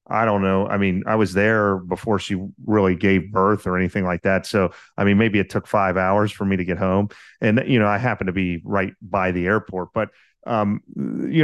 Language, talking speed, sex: English, 230 wpm, male